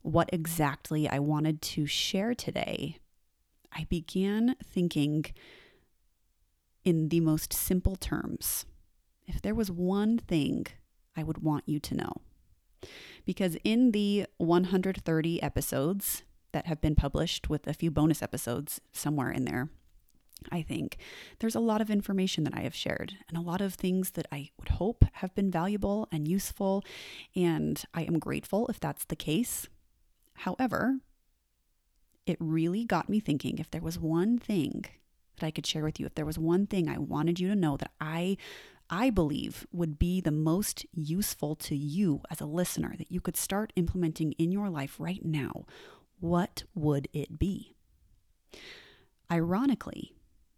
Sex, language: female, English